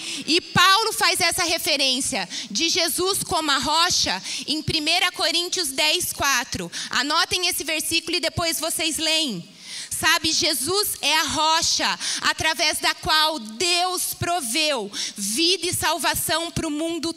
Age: 20-39